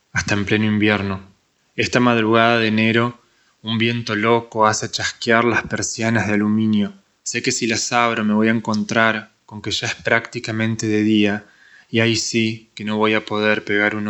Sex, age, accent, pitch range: male, 20-39, Argentinian, 105-115 Hz